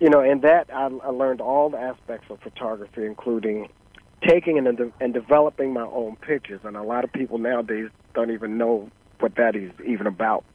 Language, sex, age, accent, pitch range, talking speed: English, male, 40-59, American, 115-150 Hz, 180 wpm